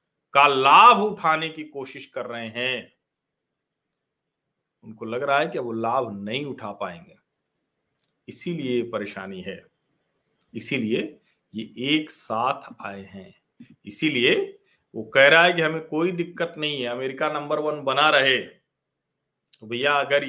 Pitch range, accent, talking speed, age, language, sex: 140-200 Hz, native, 135 wpm, 40-59, Hindi, male